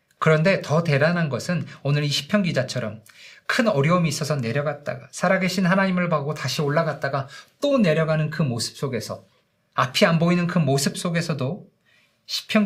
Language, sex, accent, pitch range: Korean, male, native, 130-180 Hz